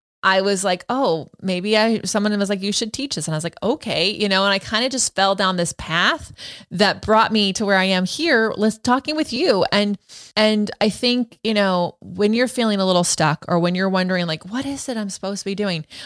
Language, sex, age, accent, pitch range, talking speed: English, female, 20-39, American, 170-215 Hz, 245 wpm